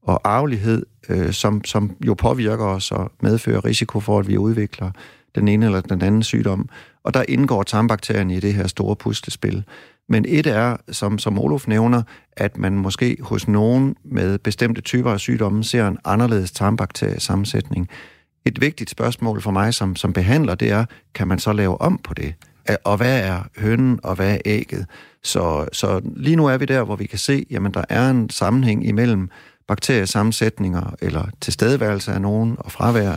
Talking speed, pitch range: 180 wpm, 95-120 Hz